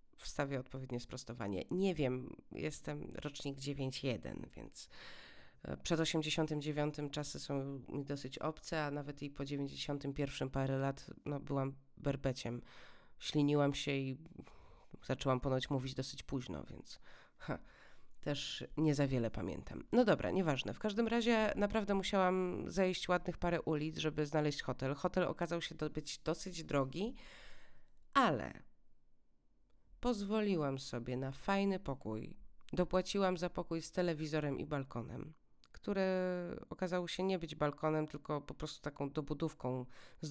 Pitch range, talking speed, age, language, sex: 140-180 Hz, 130 wpm, 30-49, Polish, female